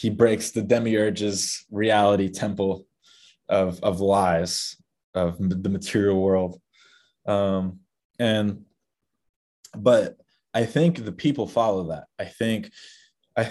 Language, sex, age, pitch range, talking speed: English, male, 20-39, 90-105 Hz, 110 wpm